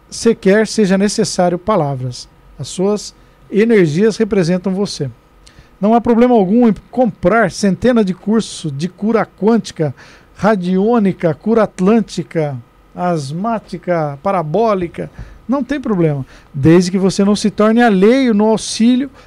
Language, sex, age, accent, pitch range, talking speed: Portuguese, male, 50-69, Brazilian, 175-225 Hz, 120 wpm